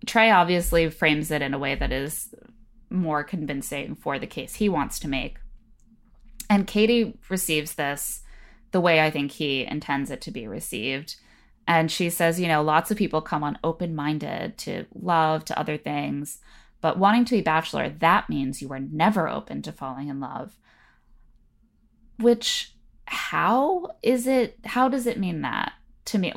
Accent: American